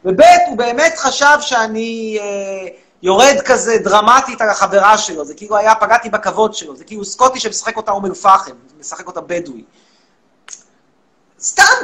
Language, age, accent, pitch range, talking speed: Hebrew, 40-59, native, 175-230 Hz, 150 wpm